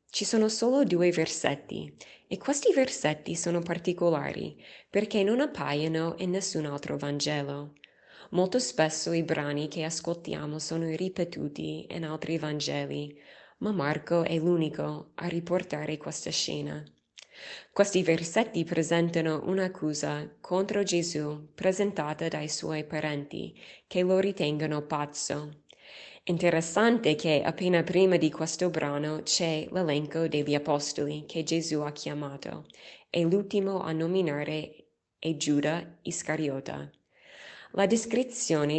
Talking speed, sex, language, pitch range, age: 115 wpm, female, Italian, 150-185 Hz, 20-39